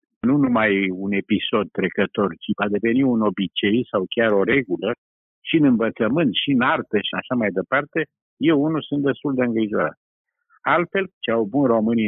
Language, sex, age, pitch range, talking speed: Romanian, male, 50-69, 110-150 Hz, 175 wpm